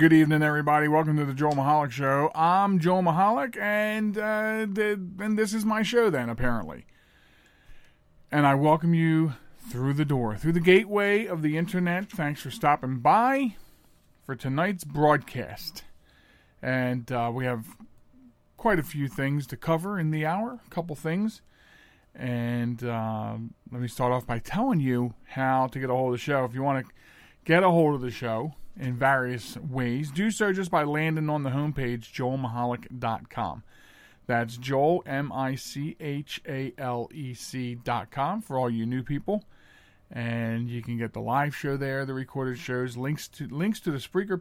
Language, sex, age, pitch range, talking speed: English, male, 40-59, 125-170 Hz, 165 wpm